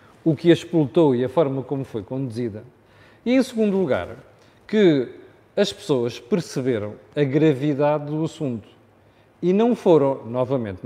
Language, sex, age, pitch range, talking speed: Portuguese, male, 40-59, 115-155 Hz, 145 wpm